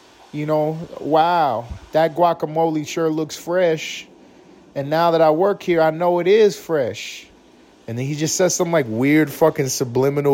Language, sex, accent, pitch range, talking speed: English, male, American, 115-160 Hz, 170 wpm